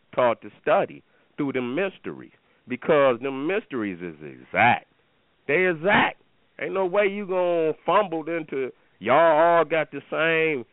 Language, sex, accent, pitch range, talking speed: English, male, American, 150-190 Hz, 145 wpm